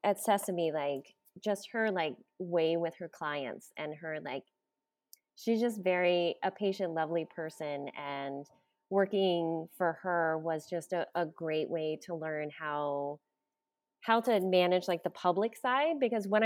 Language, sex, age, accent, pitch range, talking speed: English, female, 20-39, American, 155-200 Hz, 155 wpm